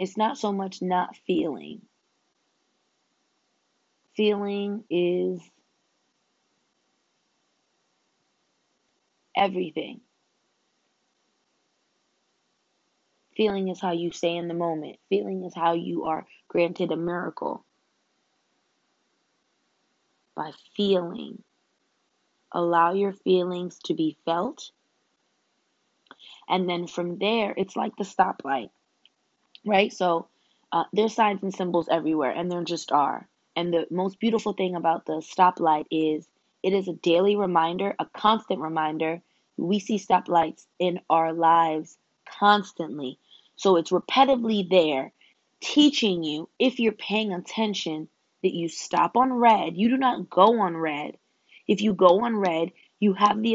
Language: English